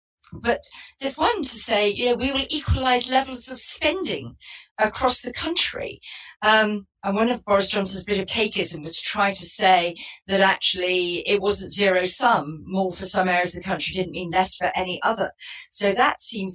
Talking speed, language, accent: 190 wpm, English, British